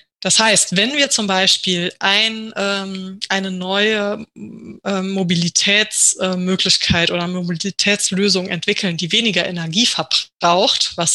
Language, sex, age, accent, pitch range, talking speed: German, female, 20-39, German, 180-220 Hz, 110 wpm